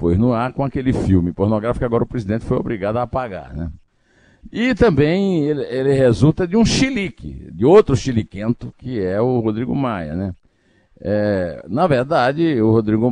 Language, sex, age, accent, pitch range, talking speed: Portuguese, male, 60-79, Brazilian, 85-120 Hz, 175 wpm